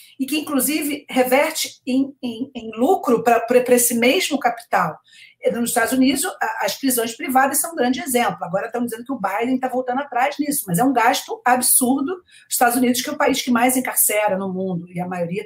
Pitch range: 215-270 Hz